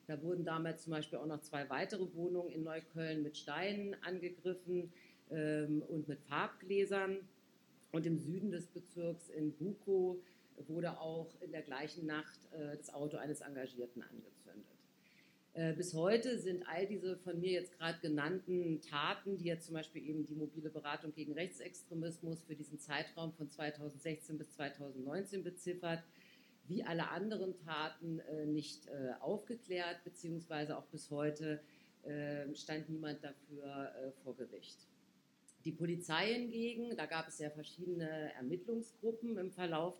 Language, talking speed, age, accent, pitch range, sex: German, 140 wpm, 50-69, German, 150-180 Hz, female